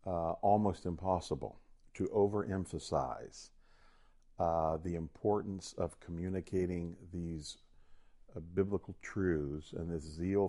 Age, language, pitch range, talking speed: 50-69, English, 80-95 Hz, 95 wpm